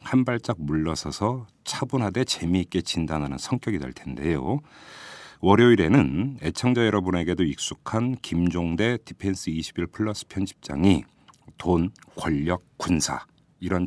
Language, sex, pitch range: Korean, male, 80-110 Hz